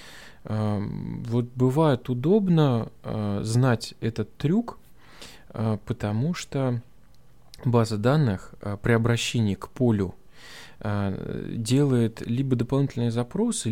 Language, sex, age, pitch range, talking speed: Russian, male, 20-39, 100-135 Hz, 80 wpm